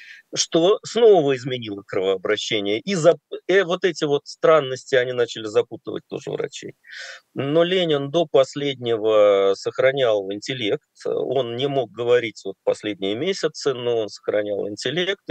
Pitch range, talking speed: 120-180 Hz, 120 wpm